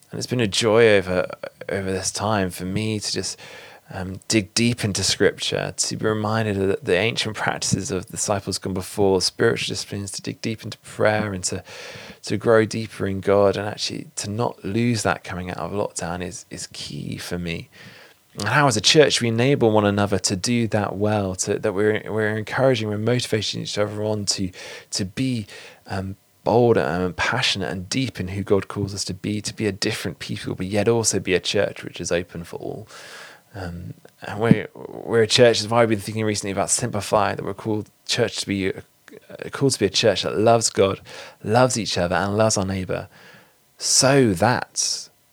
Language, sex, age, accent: English, male, 20-39, British